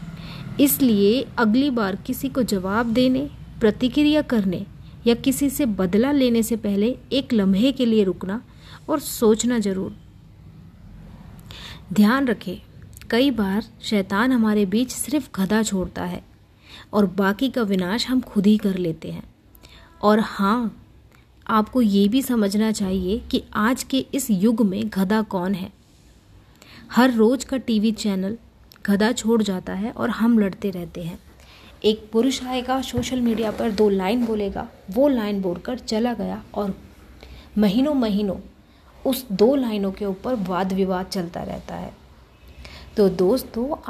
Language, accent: Hindi, native